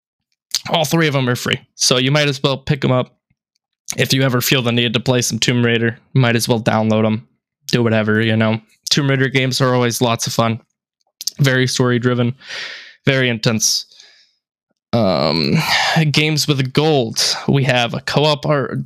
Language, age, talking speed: English, 10-29, 180 wpm